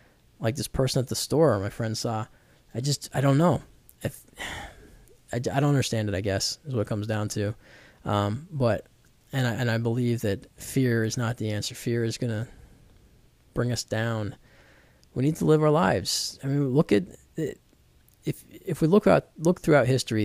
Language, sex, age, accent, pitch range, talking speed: English, male, 20-39, American, 110-130 Hz, 195 wpm